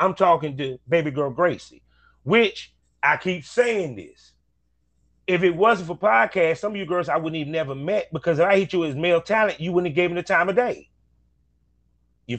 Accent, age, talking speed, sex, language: American, 30-49, 215 wpm, male, English